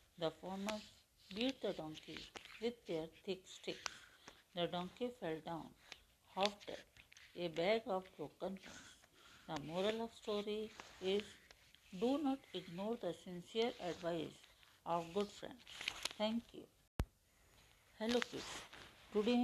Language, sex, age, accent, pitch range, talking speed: Hindi, female, 60-79, native, 170-215 Hz, 115 wpm